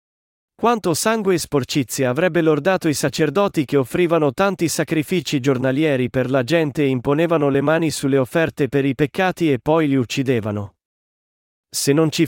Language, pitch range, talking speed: Italian, 125-160 Hz, 155 wpm